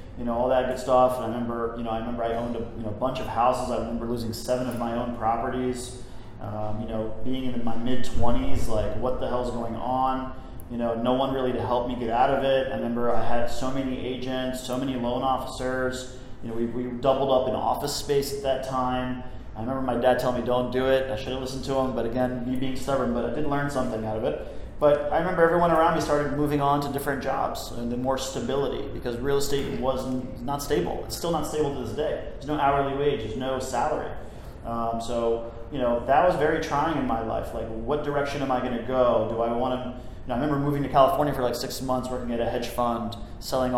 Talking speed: 245 wpm